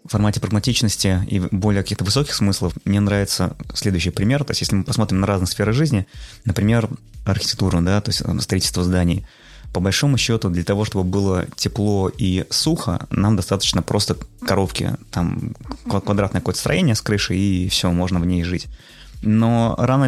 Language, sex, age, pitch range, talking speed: Russian, male, 20-39, 95-115 Hz, 165 wpm